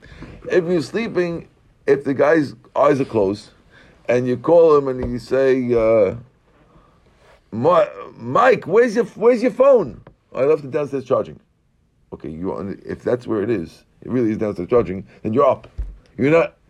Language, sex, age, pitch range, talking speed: English, male, 50-69, 110-145 Hz, 165 wpm